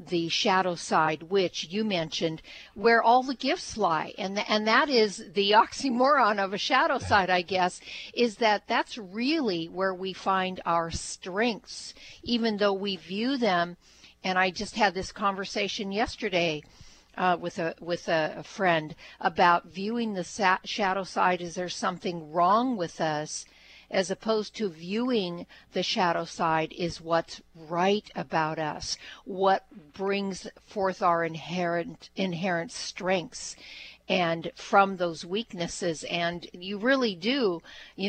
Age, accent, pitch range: 60-79, American, 170-210 Hz